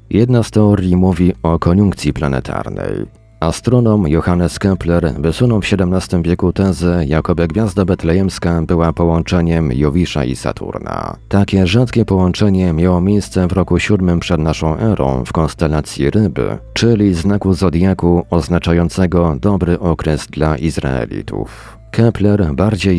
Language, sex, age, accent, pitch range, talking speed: Polish, male, 40-59, native, 80-100 Hz, 125 wpm